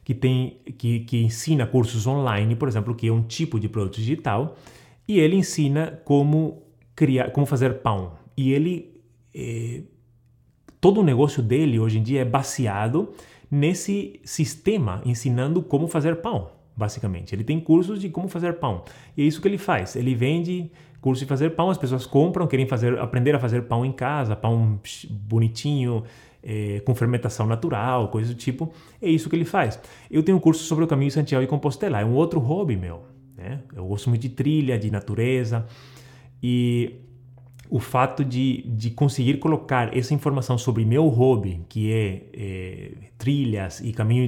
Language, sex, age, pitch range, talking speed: Portuguese, male, 30-49, 115-145 Hz, 175 wpm